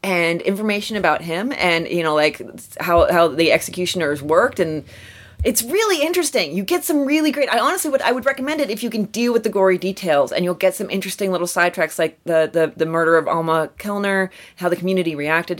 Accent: American